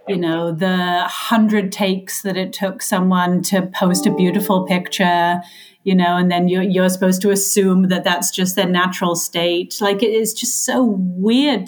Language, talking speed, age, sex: English, 180 wpm, 30-49, female